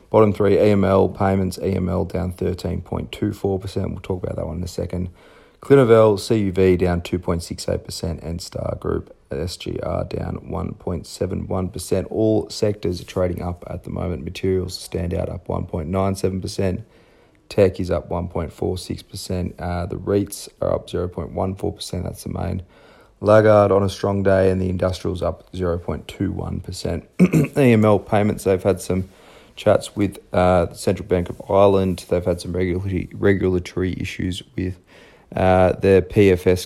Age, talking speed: 30-49, 180 wpm